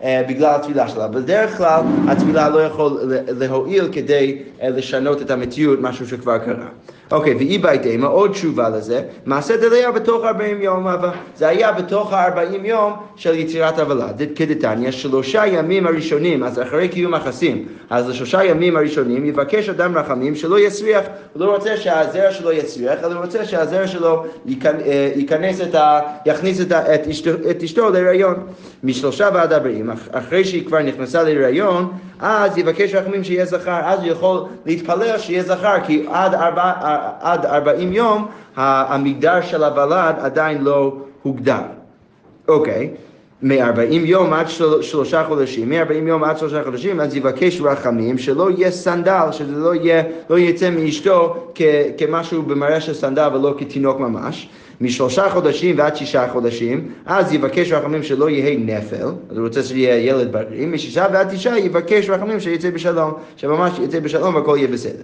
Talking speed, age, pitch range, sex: 150 wpm, 30-49, 140-180 Hz, male